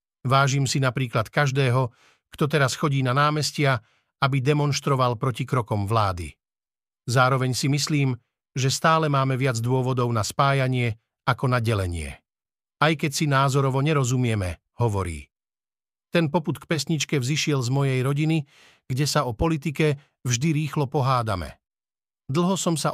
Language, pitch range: Slovak, 125-155 Hz